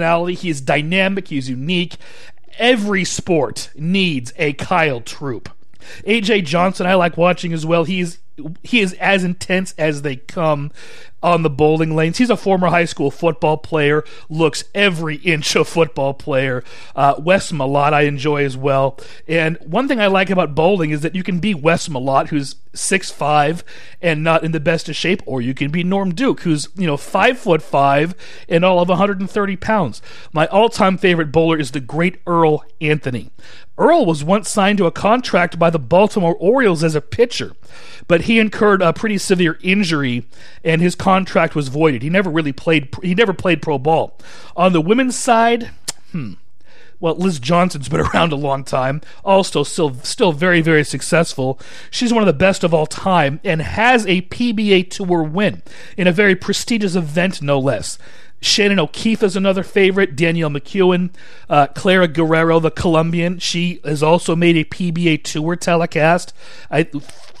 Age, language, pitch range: 40-59, English, 150-190 Hz